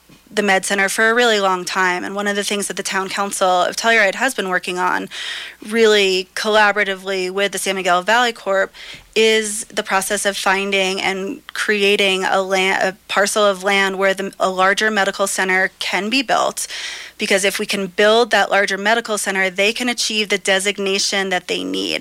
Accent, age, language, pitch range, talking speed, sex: American, 20-39, English, 190-210 Hz, 190 wpm, female